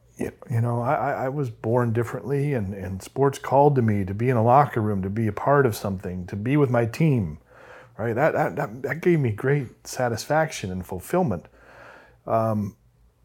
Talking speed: 185 wpm